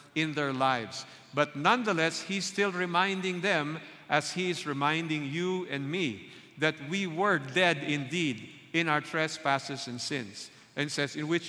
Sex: male